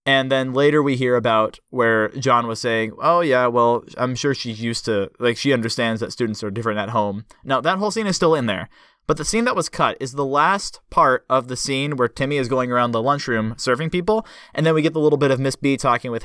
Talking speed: 260 wpm